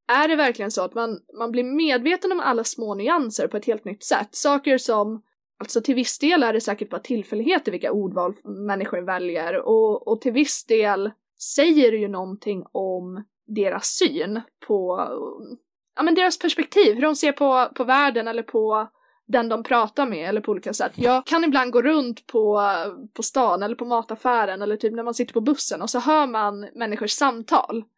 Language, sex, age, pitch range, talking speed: Swedish, female, 20-39, 220-290 Hz, 195 wpm